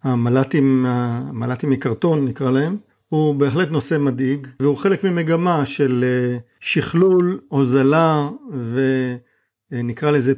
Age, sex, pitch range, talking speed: 50-69, male, 130-160 Hz, 90 wpm